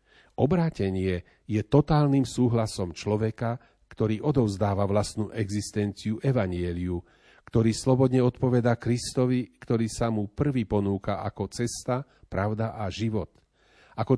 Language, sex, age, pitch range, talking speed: Slovak, male, 40-59, 100-125 Hz, 105 wpm